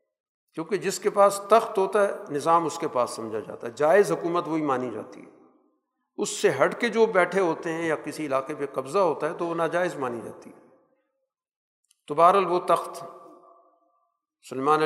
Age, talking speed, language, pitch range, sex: 50-69, 185 wpm, Urdu, 140-180 Hz, male